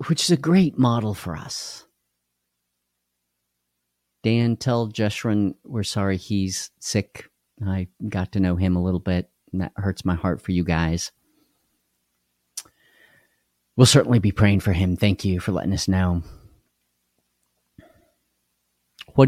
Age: 40-59